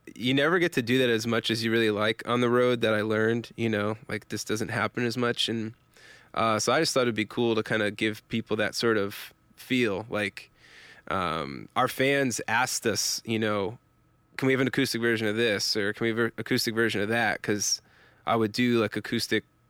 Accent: American